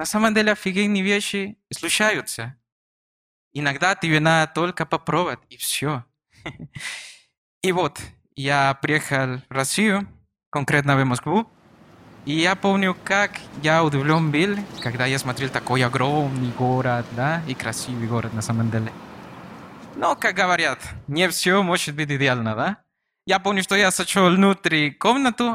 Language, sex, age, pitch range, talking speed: Russian, male, 20-39, 135-195 Hz, 135 wpm